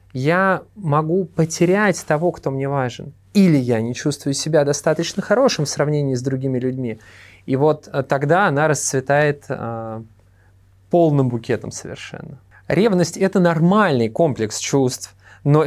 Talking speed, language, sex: 135 wpm, Russian, male